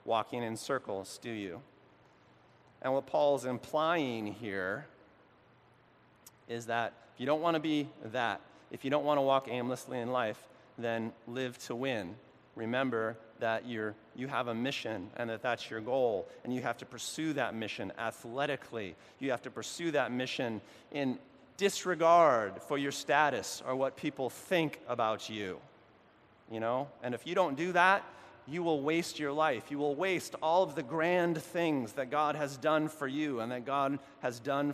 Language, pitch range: English, 115-155 Hz